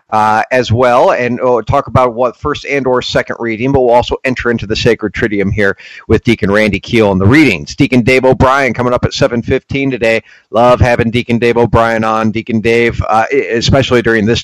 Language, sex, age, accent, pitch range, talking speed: English, male, 40-59, American, 110-130 Hz, 225 wpm